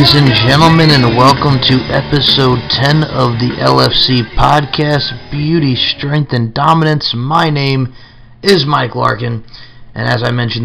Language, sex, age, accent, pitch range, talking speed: English, male, 30-49, American, 115-135 Hz, 140 wpm